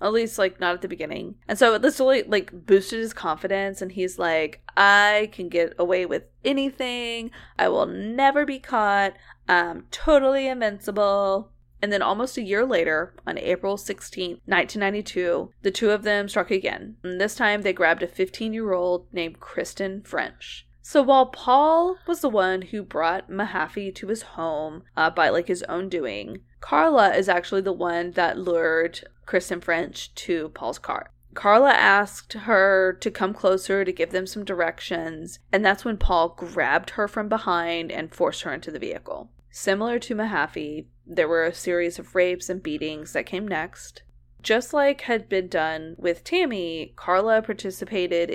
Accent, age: American, 20-39